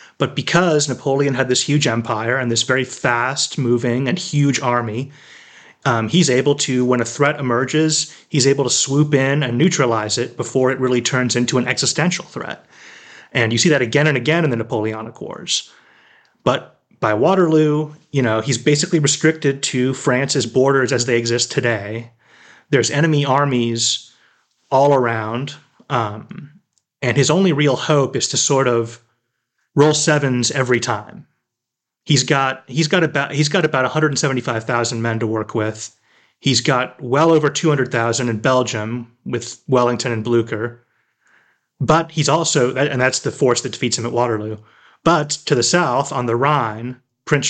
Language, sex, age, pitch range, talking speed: English, male, 30-49, 120-145 Hz, 170 wpm